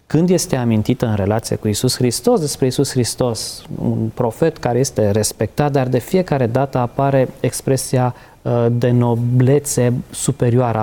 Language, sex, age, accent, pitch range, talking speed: Romanian, male, 20-39, native, 115-140 Hz, 140 wpm